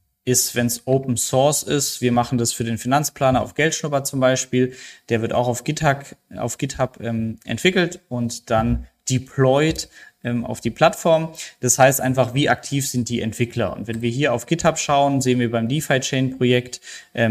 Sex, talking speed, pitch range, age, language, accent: male, 175 wpm, 120-135 Hz, 20-39, German, German